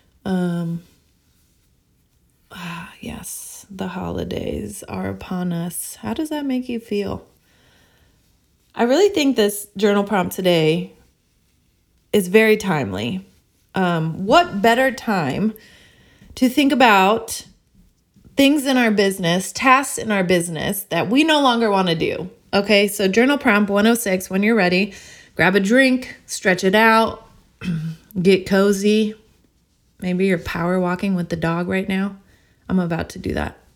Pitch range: 170-225 Hz